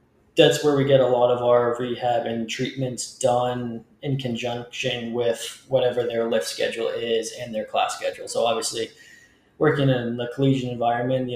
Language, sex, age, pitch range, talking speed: English, male, 20-39, 120-140 Hz, 170 wpm